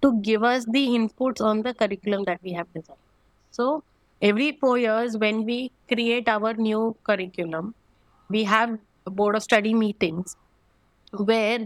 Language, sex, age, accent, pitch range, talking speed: English, female, 20-39, Indian, 200-250 Hz, 155 wpm